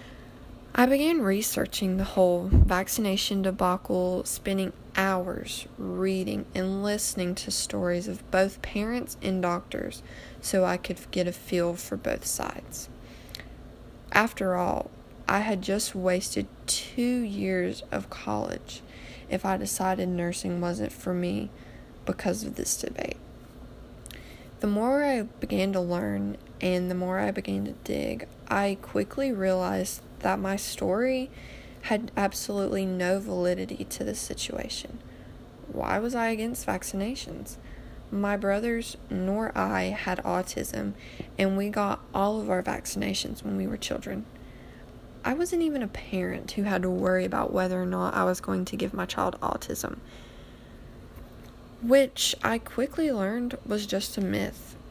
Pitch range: 180-210 Hz